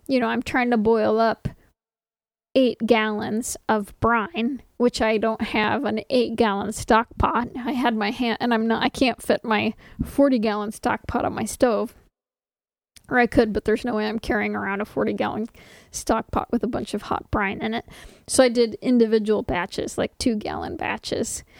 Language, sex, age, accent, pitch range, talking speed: English, female, 20-39, American, 215-245 Hz, 190 wpm